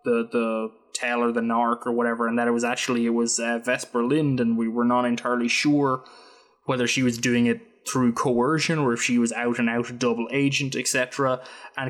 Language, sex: English, male